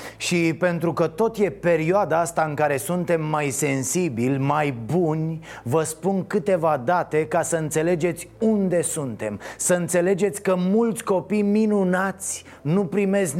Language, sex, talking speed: Romanian, male, 140 wpm